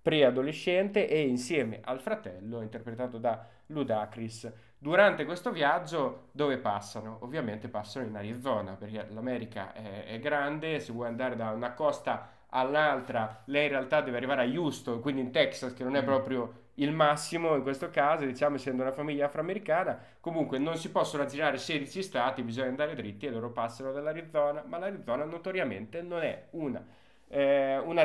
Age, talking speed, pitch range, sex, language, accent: 20-39, 160 wpm, 115-150 Hz, male, Italian, native